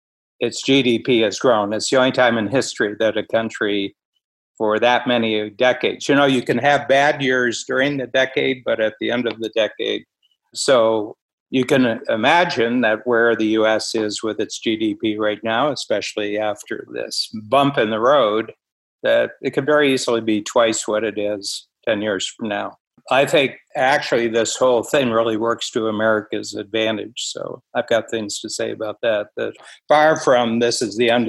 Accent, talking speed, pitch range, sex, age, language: American, 180 wpm, 105-125 Hz, male, 60-79, English